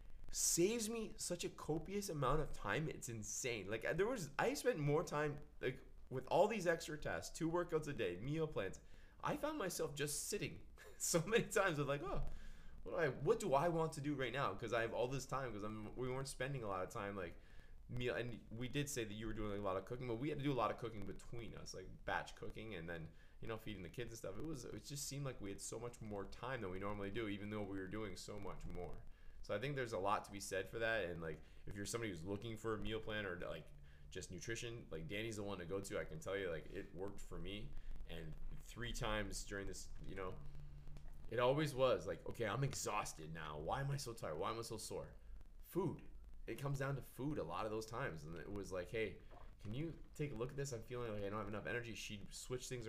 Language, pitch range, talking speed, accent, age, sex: English, 100-135 Hz, 260 wpm, American, 20-39, male